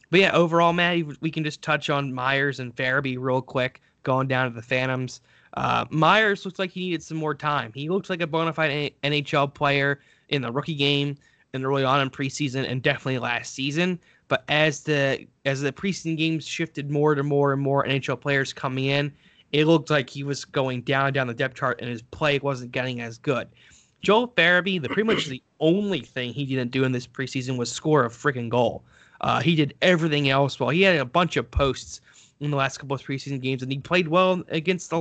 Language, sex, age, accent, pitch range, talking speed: English, male, 20-39, American, 130-155 Hz, 220 wpm